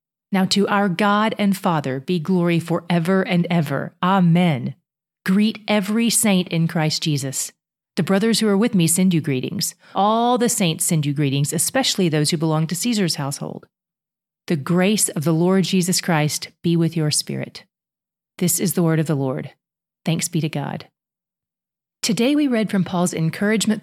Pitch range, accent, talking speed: 165-210 Hz, American, 170 wpm